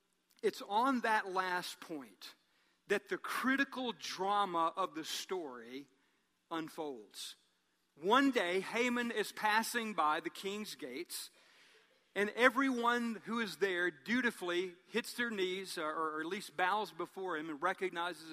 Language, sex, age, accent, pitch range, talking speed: English, male, 50-69, American, 165-230 Hz, 130 wpm